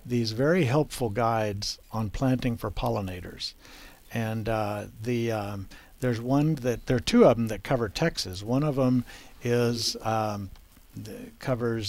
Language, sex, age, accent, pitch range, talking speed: English, male, 60-79, American, 110-130 Hz, 145 wpm